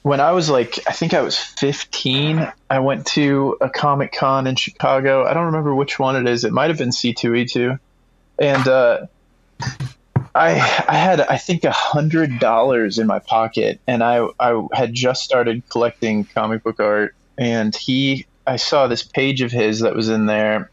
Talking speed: 175 wpm